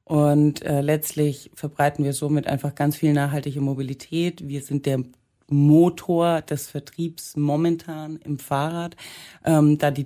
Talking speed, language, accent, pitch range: 135 wpm, German, German, 140-160 Hz